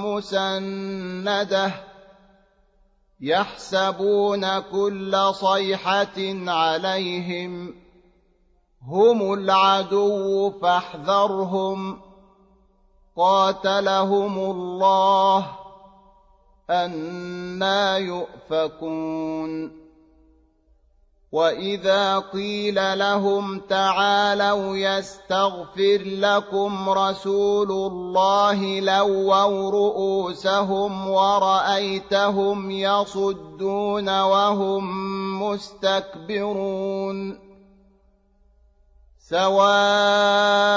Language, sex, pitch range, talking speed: Arabic, male, 190-200 Hz, 40 wpm